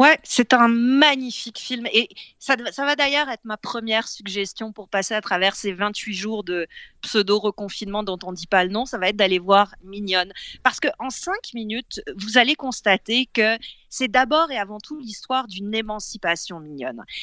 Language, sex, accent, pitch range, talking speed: French, female, French, 195-255 Hz, 185 wpm